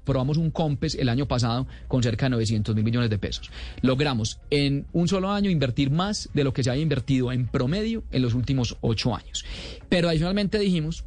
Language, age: Spanish, 30-49